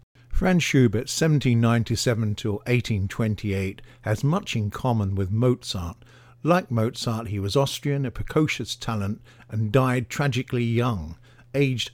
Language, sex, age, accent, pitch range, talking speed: English, male, 50-69, British, 115-135 Hz, 115 wpm